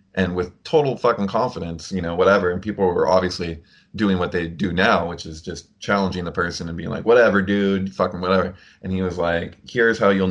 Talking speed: 215 wpm